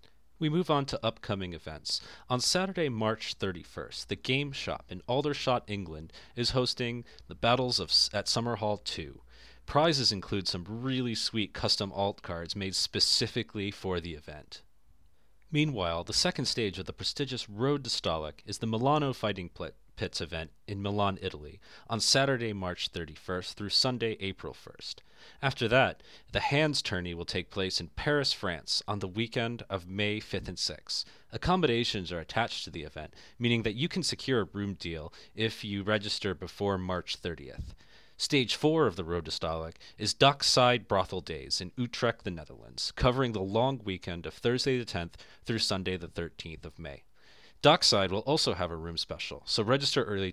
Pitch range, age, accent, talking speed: 90-125 Hz, 30-49, American, 170 wpm